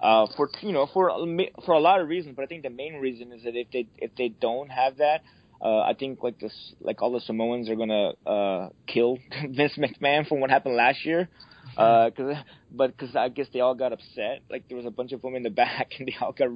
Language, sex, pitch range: English, male, 115-140 Hz